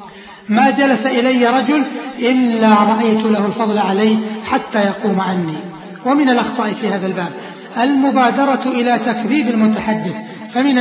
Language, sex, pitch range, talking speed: Arabic, male, 215-245 Hz, 120 wpm